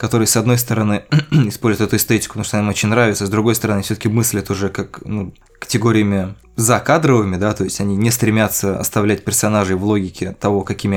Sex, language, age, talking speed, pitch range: male, Russian, 20-39, 190 wpm, 100-120 Hz